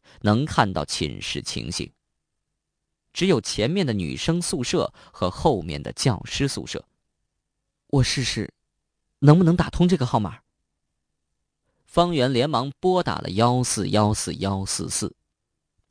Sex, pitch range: male, 95-145 Hz